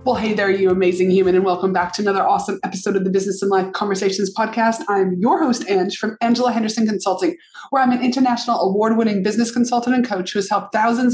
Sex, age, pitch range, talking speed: female, 30-49, 195-245 Hz, 220 wpm